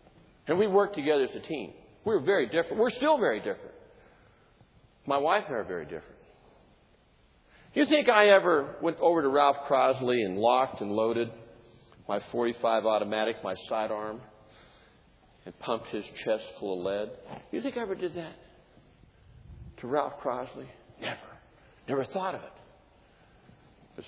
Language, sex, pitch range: English, male, 110-175 Hz